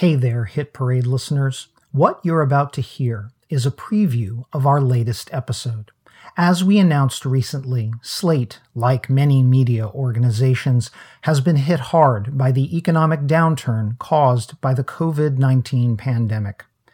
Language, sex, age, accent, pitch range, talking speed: English, male, 50-69, American, 125-155 Hz, 140 wpm